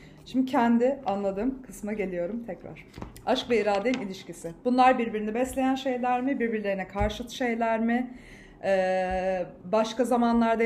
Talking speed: 125 wpm